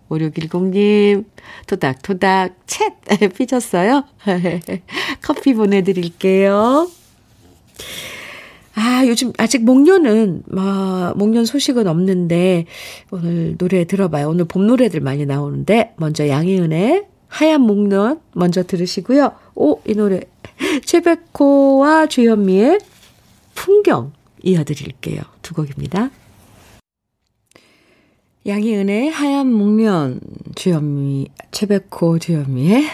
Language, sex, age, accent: Korean, female, 40-59, native